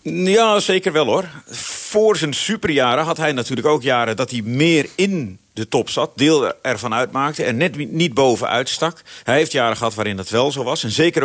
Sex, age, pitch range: male, 40-59, 120-165 Hz